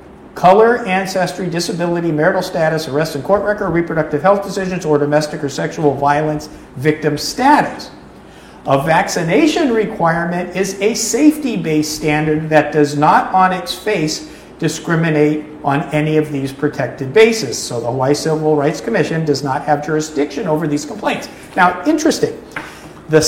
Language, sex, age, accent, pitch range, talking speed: English, male, 50-69, American, 150-195 Hz, 140 wpm